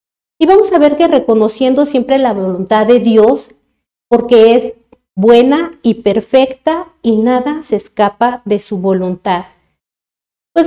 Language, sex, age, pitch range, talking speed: Spanish, female, 50-69, 215-270 Hz, 135 wpm